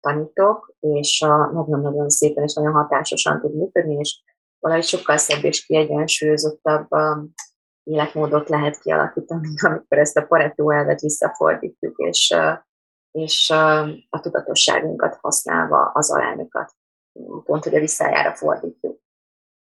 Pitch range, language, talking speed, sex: 150-185 Hz, Hungarian, 115 wpm, female